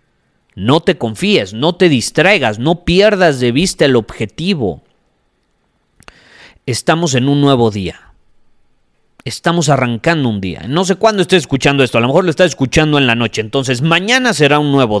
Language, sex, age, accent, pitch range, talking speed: Spanish, male, 40-59, Mexican, 120-175 Hz, 165 wpm